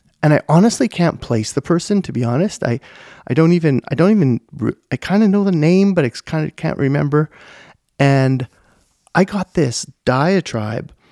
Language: English